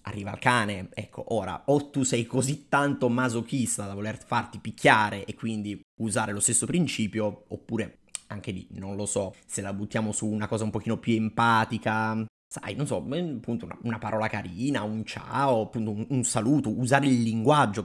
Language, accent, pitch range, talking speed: Italian, native, 105-120 Hz, 180 wpm